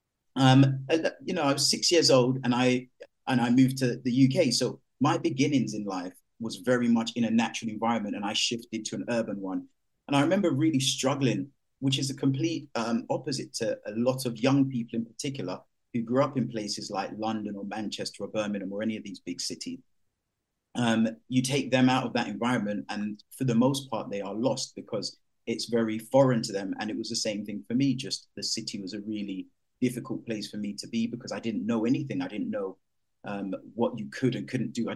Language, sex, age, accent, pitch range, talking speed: English, male, 30-49, British, 110-130 Hz, 220 wpm